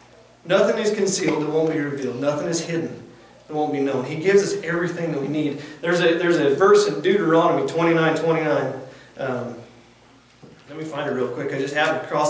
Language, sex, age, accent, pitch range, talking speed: English, male, 40-59, American, 150-185 Hz, 200 wpm